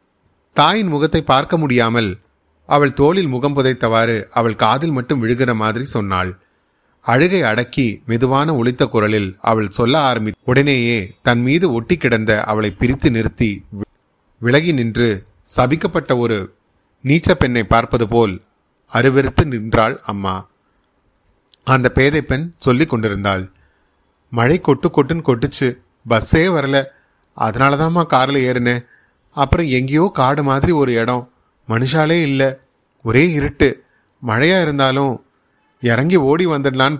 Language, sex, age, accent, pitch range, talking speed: Tamil, male, 30-49, native, 115-145 Hz, 110 wpm